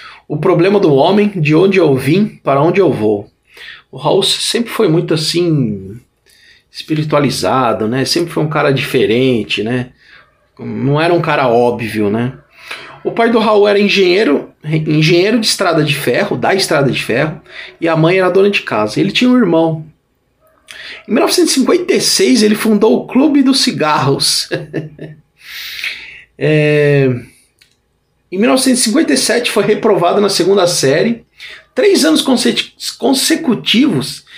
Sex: male